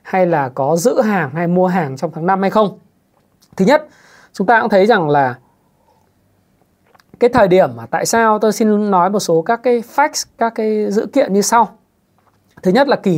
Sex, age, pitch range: male, 20-39, 160-210 Hz